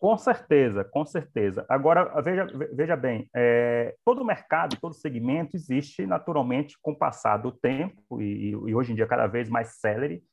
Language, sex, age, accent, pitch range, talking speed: Portuguese, male, 30-49, Brazilian, 120-160 Hz, 165 wpm